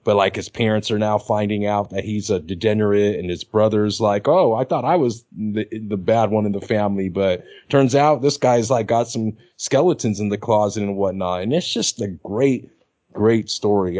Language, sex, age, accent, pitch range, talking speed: English, male, 30-49, American, 105-130 Hz, 210 wpm